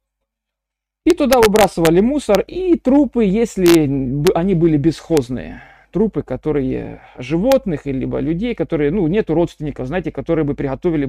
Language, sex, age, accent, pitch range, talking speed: Russian, male, 40-59, native, 125-180 Hz, 125 wpm